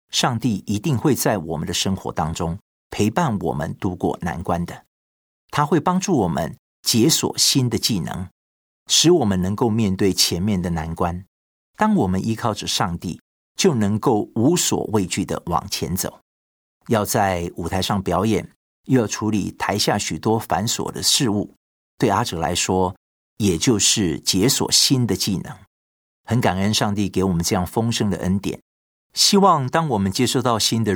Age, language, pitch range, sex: 50-69, Chinese, 90-115 Hz, male